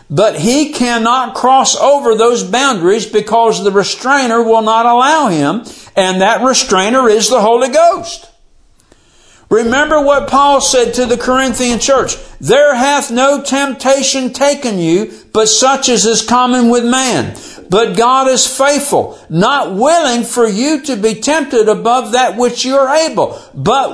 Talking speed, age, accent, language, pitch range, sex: 150 wpm, 60-79, American, English, 220-280 Hz, male